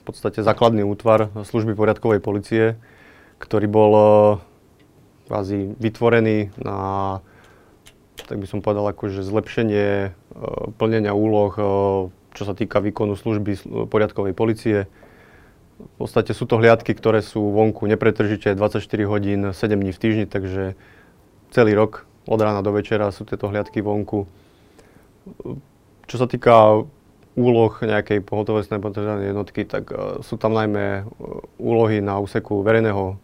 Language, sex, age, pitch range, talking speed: Slovak, male, 30-49, 100-110 Hz, 125 wpm